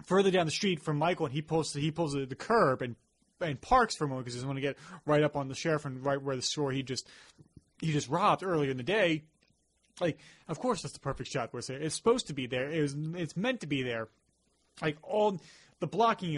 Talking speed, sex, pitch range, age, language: 250 wpm, male, 135-165 Hz, 30-49, English